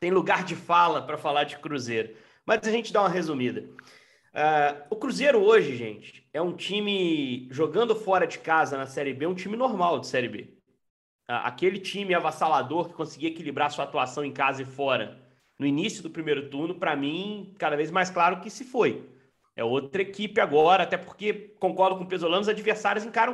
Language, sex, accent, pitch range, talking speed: Portuguese, male, Brazilian, 160-220 Hz, 190 wpm